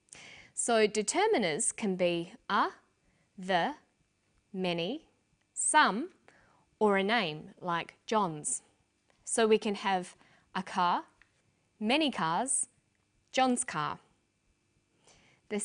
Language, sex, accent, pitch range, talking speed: English, female, Australian, 175-250 Hz, 90 wpm